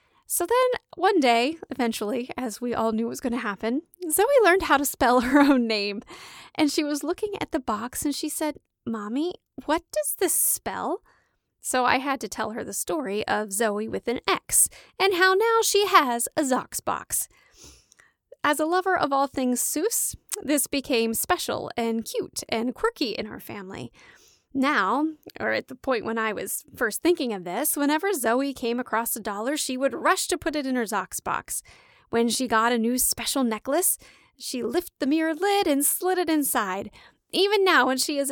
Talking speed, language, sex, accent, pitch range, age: 195 wpm, English, female, American, 240-350 Hz, 10-29